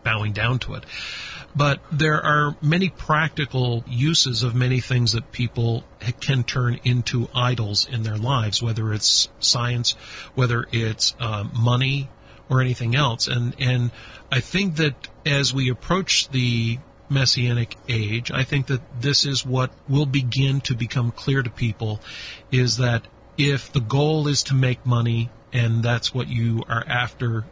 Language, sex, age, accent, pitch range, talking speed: English, male, 40-59, American, 115-135 Hz, 155 wpm